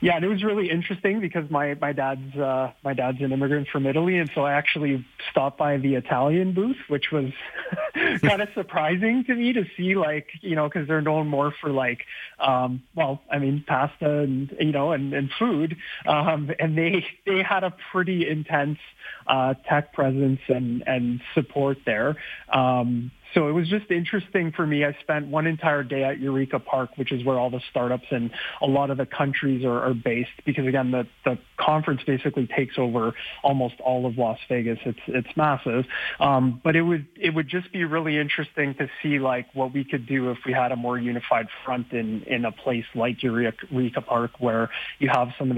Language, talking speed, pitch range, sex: English, 205 wpm, 125-155 Hz, male